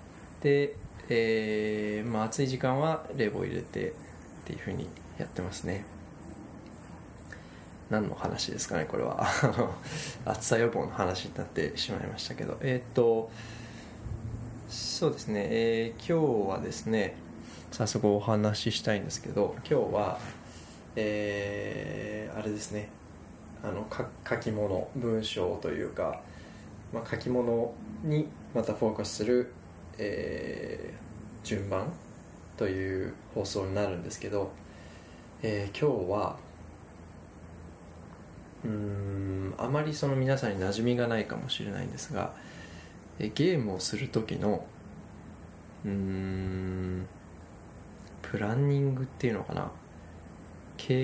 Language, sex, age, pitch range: Japanese, male, 20-39, 85-115 Hz